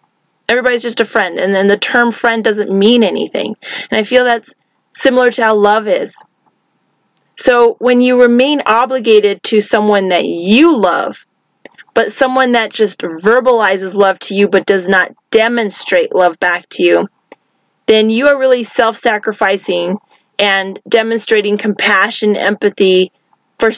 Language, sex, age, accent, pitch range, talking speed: English, female, 30-49, American, 190-230 Hz, 145 wpm